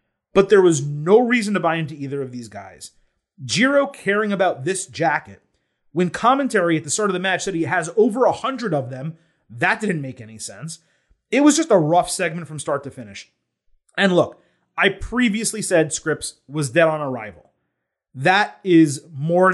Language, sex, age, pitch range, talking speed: English, male, 30-49, 140-195 Hz, 185 wpm